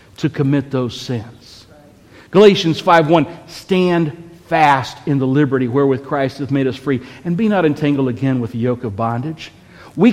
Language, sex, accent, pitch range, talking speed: English, male, American, 130-190 Hz, 165 wpm